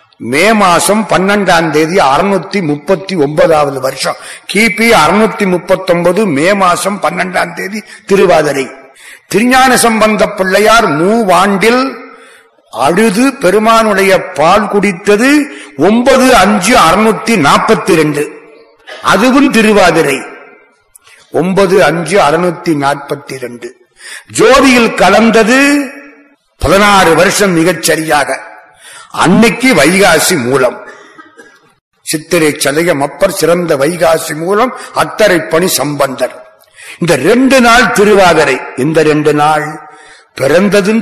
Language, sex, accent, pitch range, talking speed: Tamil, male, native, 175-225 Hz, 80 wpm